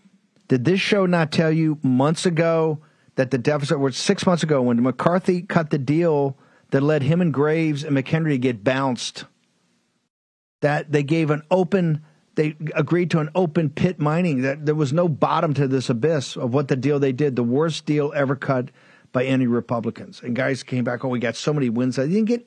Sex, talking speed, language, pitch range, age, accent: male, 205 wpm, English, 140-175 Hz, 50-69, American